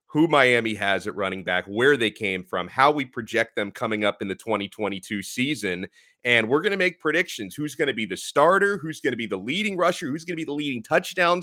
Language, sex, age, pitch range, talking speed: English, male, 30-49, 110-170 Hz, 240 wpm